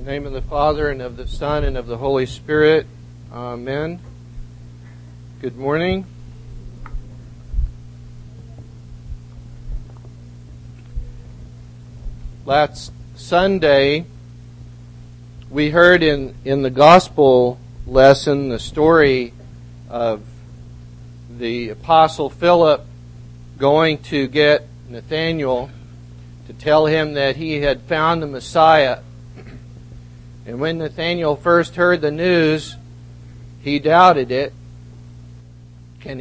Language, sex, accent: English, male, American